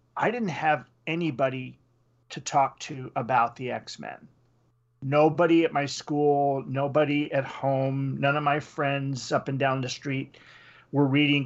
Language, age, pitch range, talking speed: English, 40-59, 125-145 Hz, 150 wpm